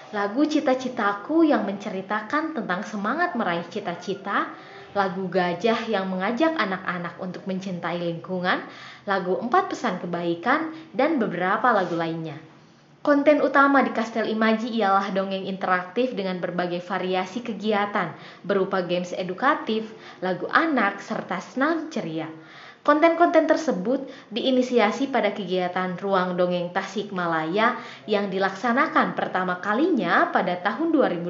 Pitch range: 185-260 Hz